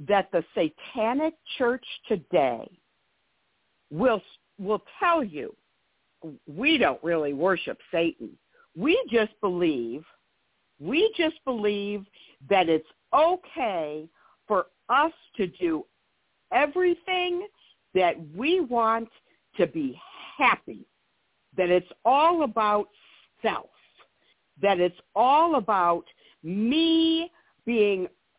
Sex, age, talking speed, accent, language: female, 60-79, 95 wpm, American, English